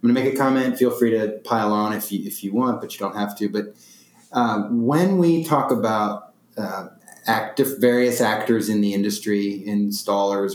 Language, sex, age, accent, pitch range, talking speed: English, male, 20-39, American, 100-125 Hz, 190 wpm